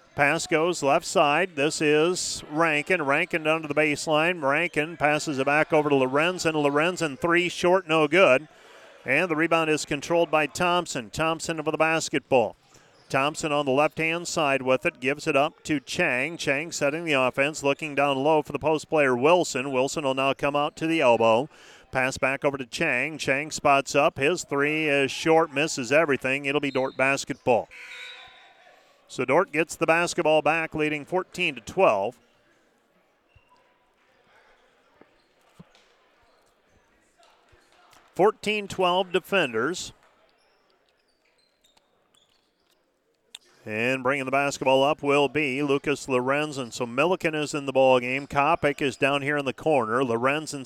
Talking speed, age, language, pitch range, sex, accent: 140 wpm, 40-59, English, 140-160 Hz, male, American